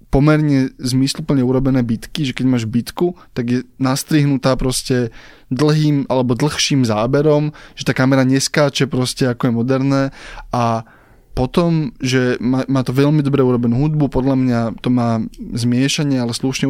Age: 20-39